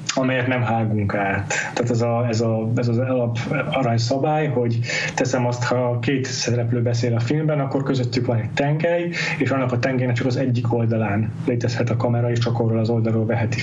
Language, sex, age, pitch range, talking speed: Hungarian, male, 30-49, 120-145 Hz, 190 wpm